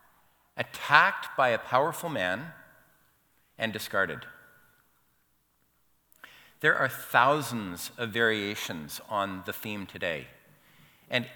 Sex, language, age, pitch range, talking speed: male, English, 50-69, 110-150 Hz, 90 wpm